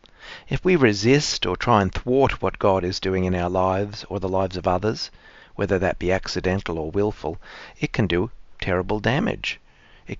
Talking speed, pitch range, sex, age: 180 wpm, 95-115 Hz, male, 40-59